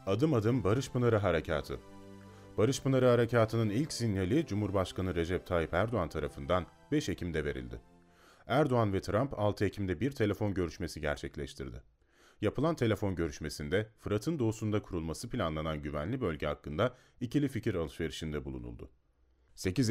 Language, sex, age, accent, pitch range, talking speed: Turkish, male, 40-59, native, 80-110 Hz, 125 wpm